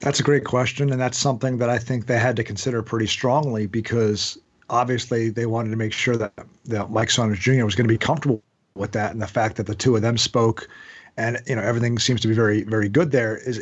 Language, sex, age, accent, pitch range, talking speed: English, male, 40-59, American, 115-145 Hz, 245 wpm